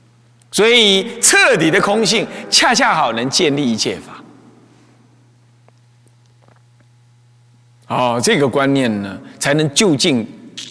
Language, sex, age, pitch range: Chinese, male, 30-49, 120-195 Hz